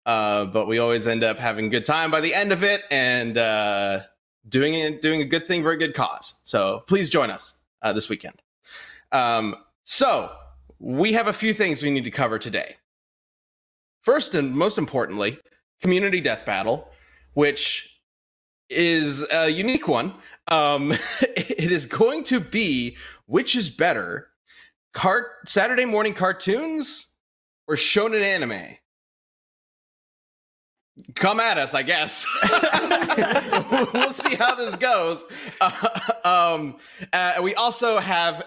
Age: 20-39